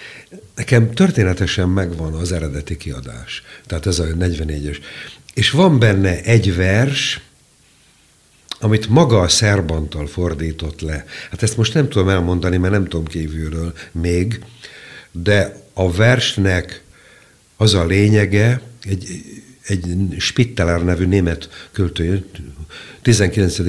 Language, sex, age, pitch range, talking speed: Hungarian, male, 60-79, 85-115 Hz, 115 wpm